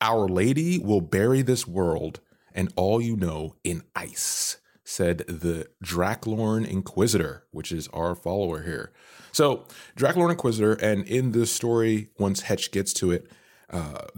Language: English